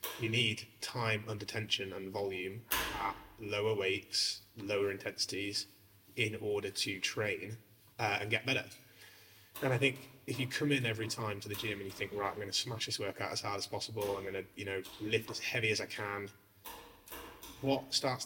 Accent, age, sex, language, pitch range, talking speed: British, 20-39, male, English, 100-115 Hz, 195 wpm